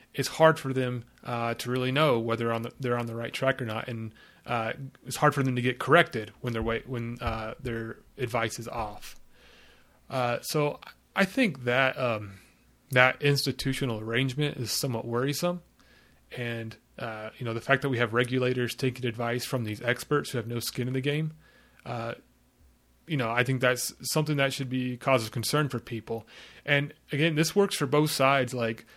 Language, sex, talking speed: English, male, 195 wpm